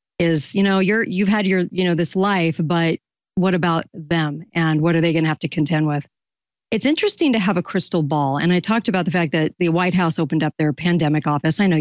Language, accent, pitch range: English, American, 160-205 Hz